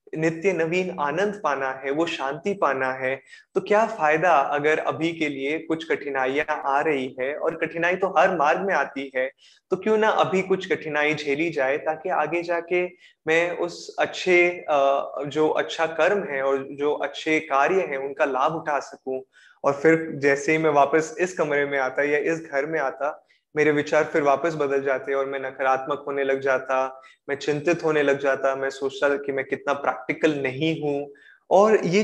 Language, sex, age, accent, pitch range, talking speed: Hindi, male, 20-39, native, 135-170 Hz, 185 wpm